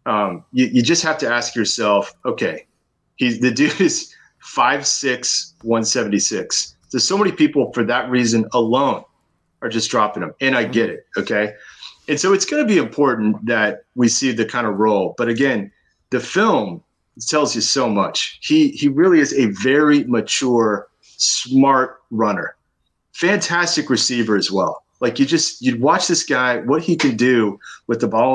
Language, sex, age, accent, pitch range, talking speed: English, male, 30-49, American, 110-145 Hz, 180 wpm